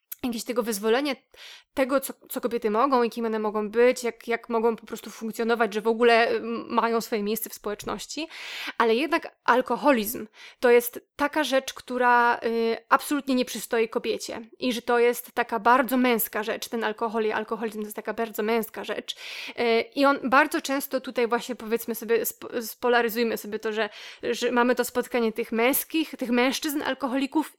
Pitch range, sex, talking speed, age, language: 230-255 Hz, female, 175 wpm, 20-39, Polish